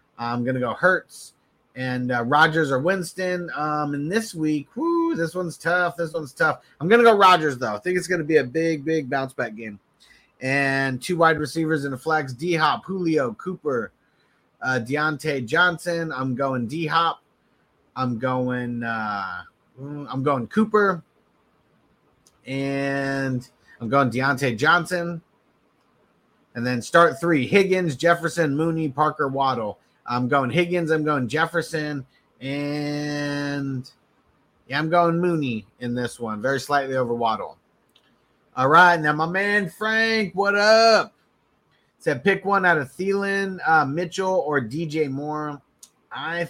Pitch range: 135-170 Hz